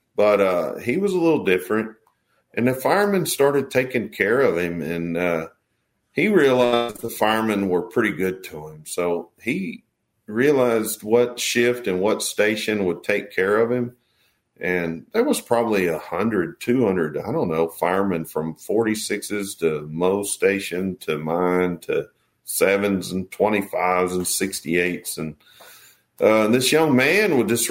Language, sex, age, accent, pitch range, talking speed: English, male, 50-69, American, 85-115 Hz, 150 wpm